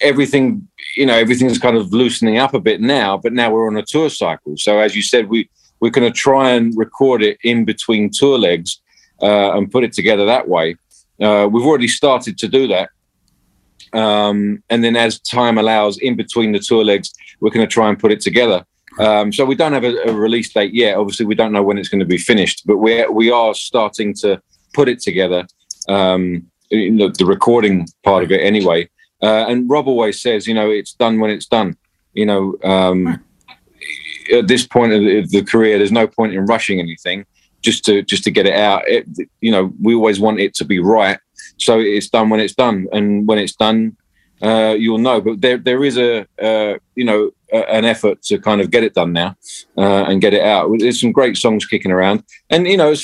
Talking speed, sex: 220 wpm, male